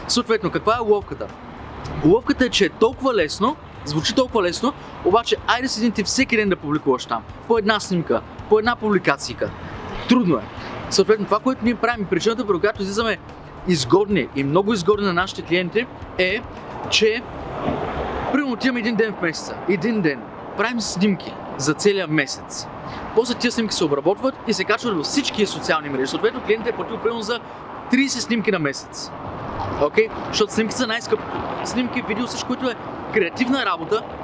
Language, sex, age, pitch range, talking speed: Bulgarian, male, 30-49, 170-230 Hz, 170 wpm